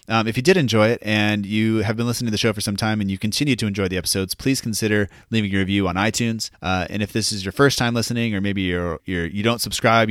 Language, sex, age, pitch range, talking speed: English, male, 30-49, 100-115 Hz, 280 wpm